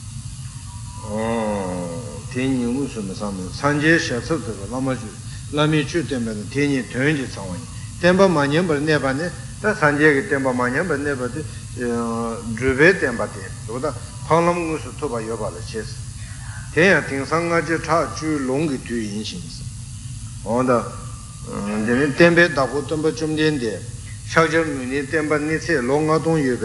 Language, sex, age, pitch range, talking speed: Italian, male, 60-79, 115-145 Hz, 55 wpm